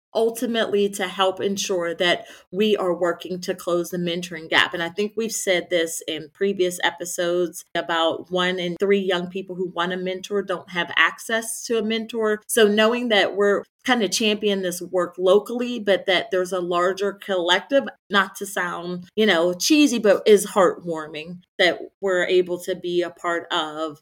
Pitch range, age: 180-210 Hz, 30-49